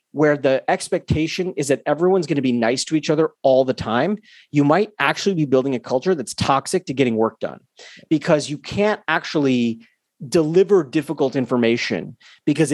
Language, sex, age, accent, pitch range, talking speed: English, male, 30-49, American, 125-160 Hz, 175 wpm